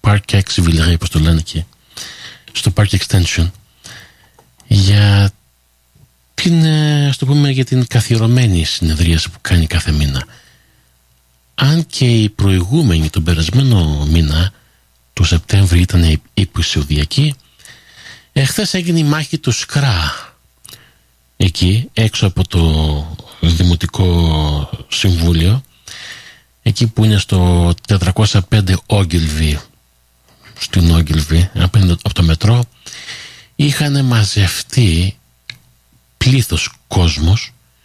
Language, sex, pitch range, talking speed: Greek, male, 80-120 Hz, 95 wpm